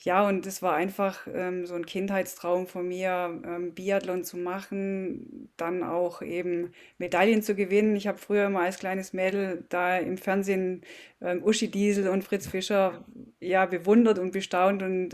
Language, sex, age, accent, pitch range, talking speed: German, female, 20-39, German, 175-195 Hz, 165 wpm